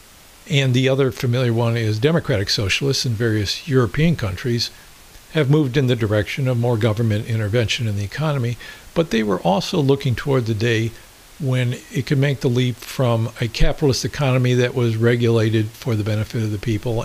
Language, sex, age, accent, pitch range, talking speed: English, male, 60-79, American, 110-135 Hz, 180 wpm